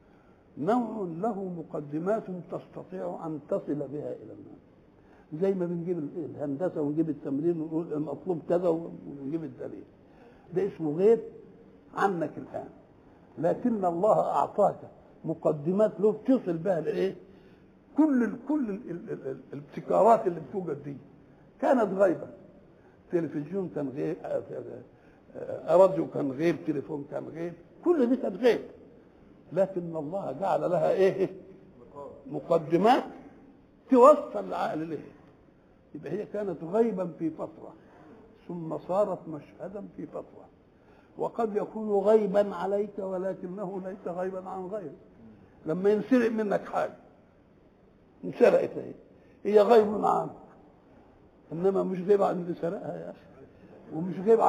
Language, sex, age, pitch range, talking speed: English, male, 60-79, 160-210 Hz, 105 wpm